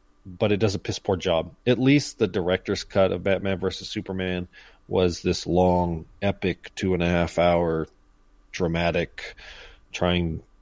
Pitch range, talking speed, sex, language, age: 90-105 Hz, 155 wpm, male, English, 30-49